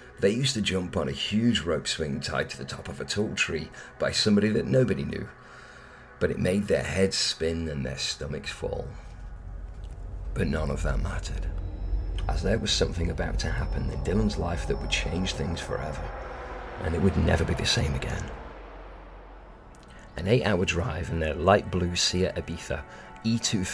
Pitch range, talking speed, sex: 80-100 Hz, 180 wpm, male